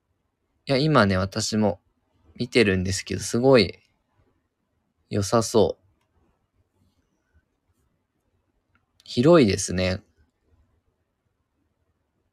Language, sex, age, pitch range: Japanese, male, 20-39, 90-125 Hz